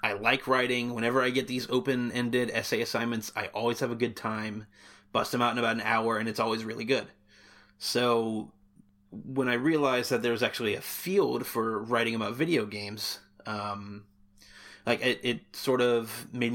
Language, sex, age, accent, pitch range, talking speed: English, male, 30-49, American, 105-125 Hz, 180 wpm